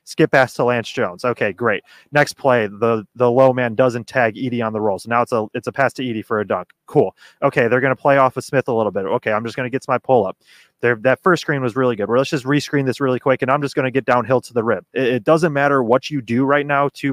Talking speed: 300 wpm